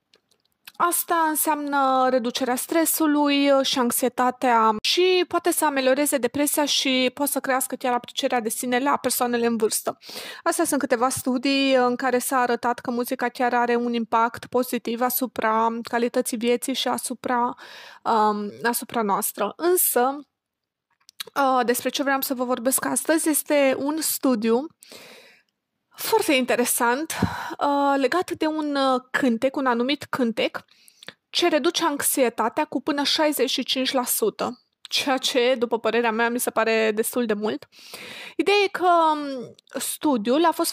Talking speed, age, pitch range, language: 130 wpm, 20-39, 240-295 Hz, Romanian